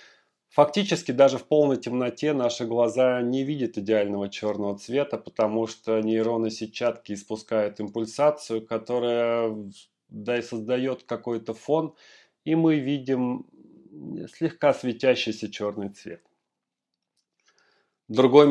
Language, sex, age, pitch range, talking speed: Russian, male, 40-59, 110-135 Hz, 100 wpm